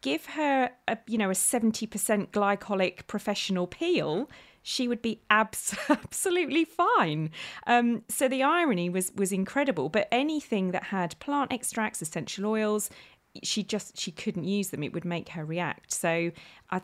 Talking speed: 155 wpm